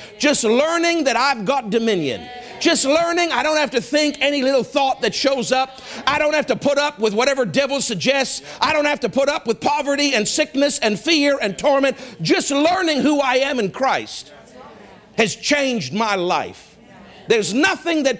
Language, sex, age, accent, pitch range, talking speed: English, male, 50-69, American, 220-285 Hz, 190 wpm